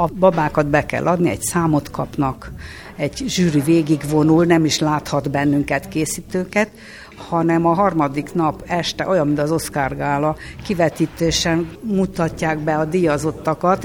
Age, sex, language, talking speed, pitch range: 60-79, female, Hungarian, 130 wpm, 150-185 Hz